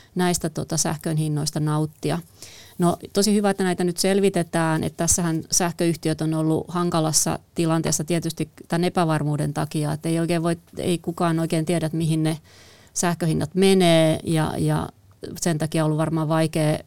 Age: 30-49